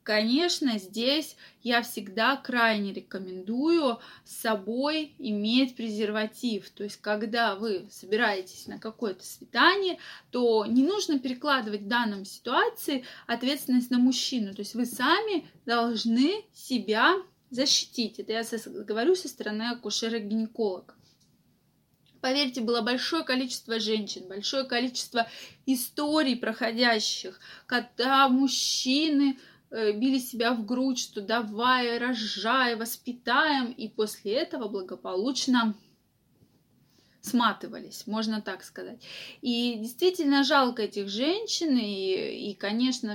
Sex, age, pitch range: female, 20-39, 215-270 Hz